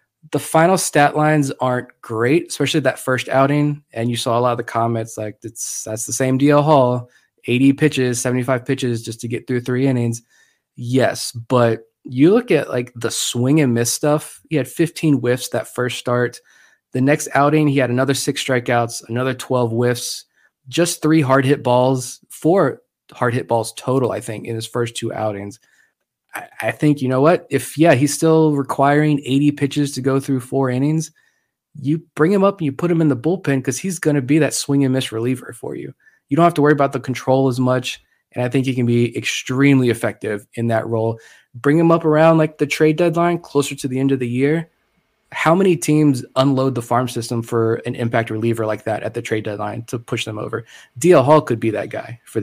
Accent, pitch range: American, 120-145 Hz